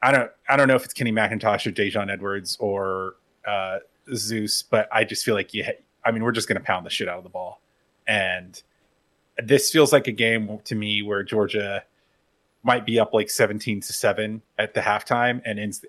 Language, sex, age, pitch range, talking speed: English, male, 30-49, 105-135 Hz, 210 wpm